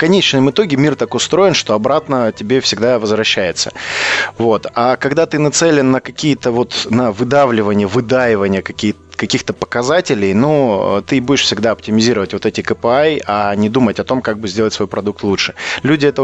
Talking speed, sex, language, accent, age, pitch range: 165 wpm, male, Russian, native, 20-39, 110-135 Hz